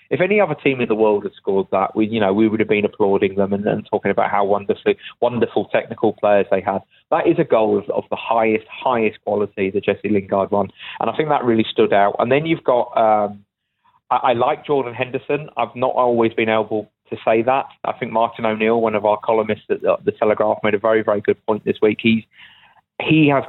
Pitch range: 105-130 Hz